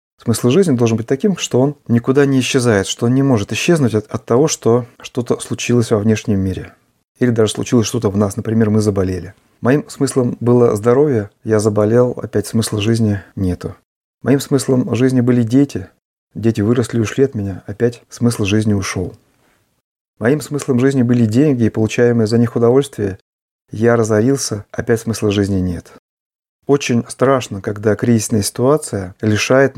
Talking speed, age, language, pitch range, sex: 165 wpm, 30-49, Russian, 105-125 Hz, male